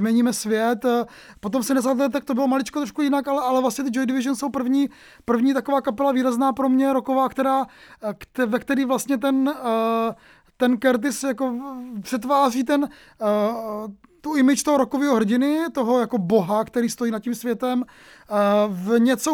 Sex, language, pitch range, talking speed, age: male, English, 230-270 Hz, 160 wpm, 20-39